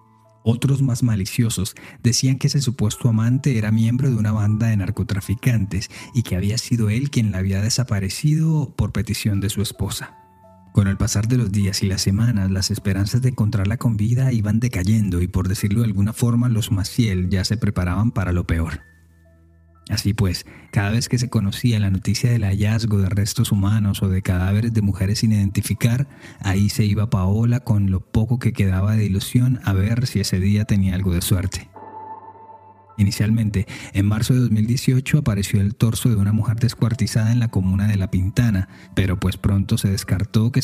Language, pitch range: Spanish, 100-115 Hz